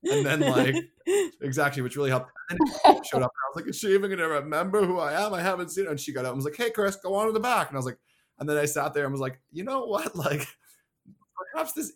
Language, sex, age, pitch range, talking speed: English, male, 20-39, 120-175 Hz, 300 wpm